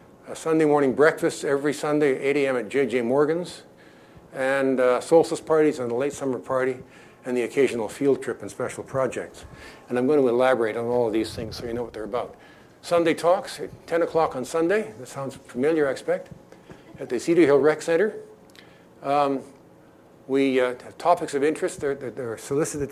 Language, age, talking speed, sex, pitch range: English, 60-79, 195 wpm, male, 125-160 Hz